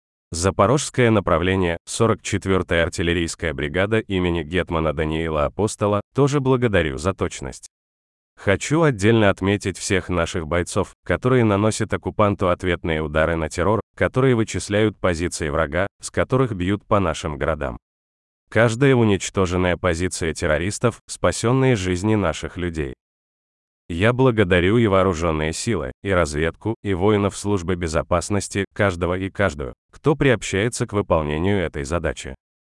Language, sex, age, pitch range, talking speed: Russian, male, 30-49, 80-105 Hz, 115 wpm